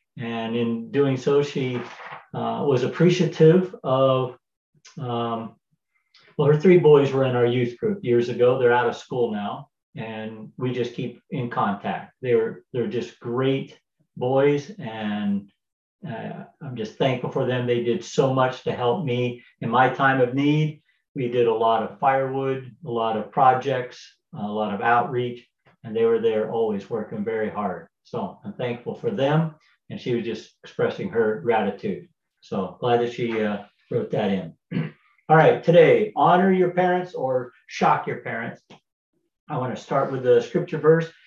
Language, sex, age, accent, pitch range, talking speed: English, male, 50-69, American, 120-160 Hz, 170 wpm